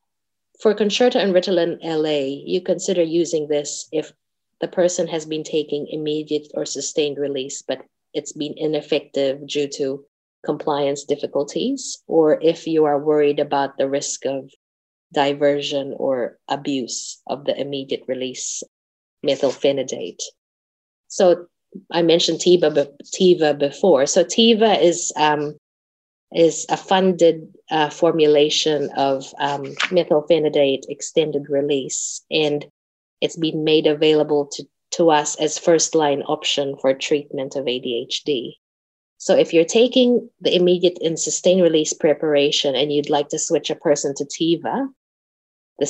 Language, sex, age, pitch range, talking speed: English, female, 20-39, 140-170 Hz, 130 wpm